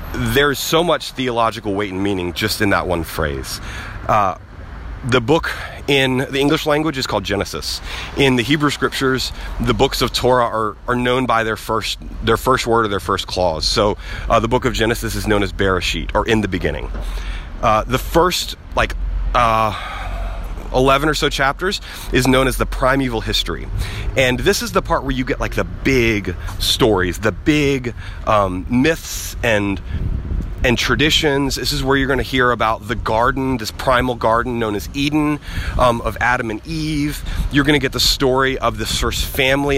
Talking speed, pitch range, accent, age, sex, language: 185 wpm, 95-130 Hz, American, 30-49, male, English